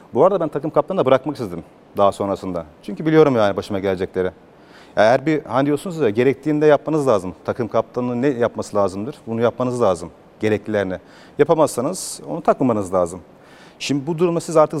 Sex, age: male, 40-59